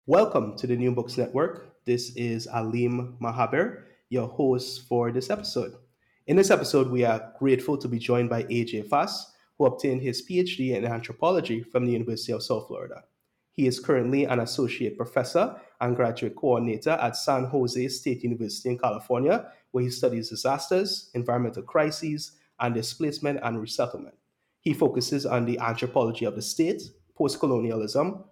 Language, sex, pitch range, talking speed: English, male, 120-145 Hz, 155 wpm